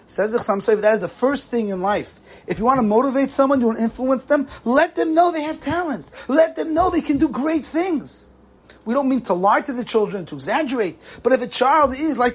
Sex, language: male, English